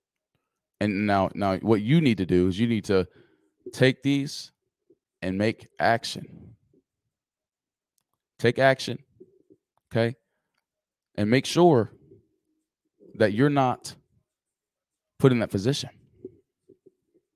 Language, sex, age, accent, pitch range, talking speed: English, male, 20-39, American, 100-140 Hz, 105 wpm